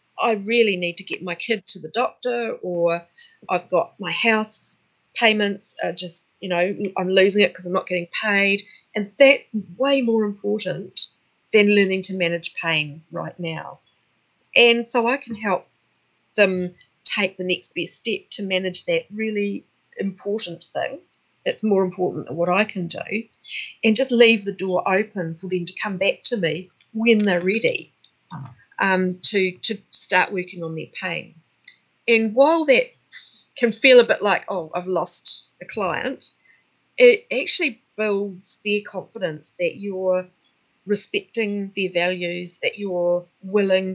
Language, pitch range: English, 180-220 Hz